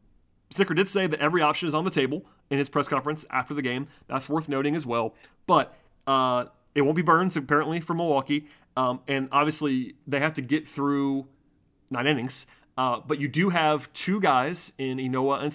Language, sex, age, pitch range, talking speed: English, male, 30-49, 125-150 Hz, 195 wpm